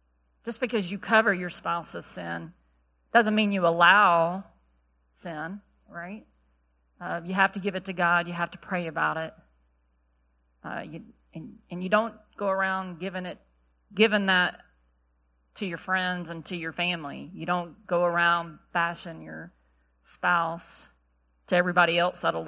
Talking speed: 150 wpm